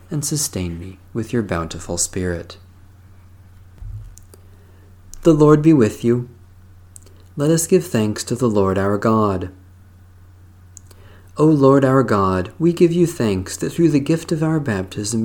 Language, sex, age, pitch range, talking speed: English, male, 40-59, 95-130 Hz, 140 wpm